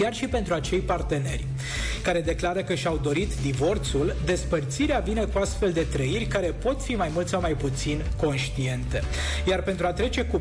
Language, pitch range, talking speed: Romanian, 140-200 Hz, 180 wpm